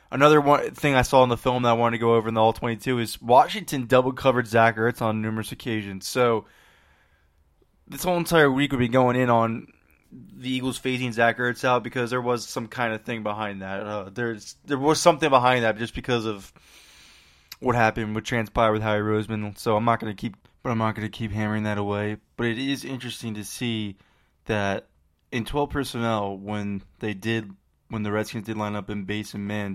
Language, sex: English, male